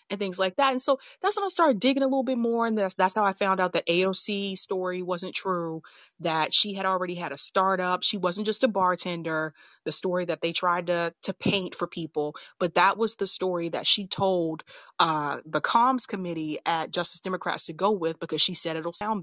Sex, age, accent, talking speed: female, 30-49, American, 225 wpm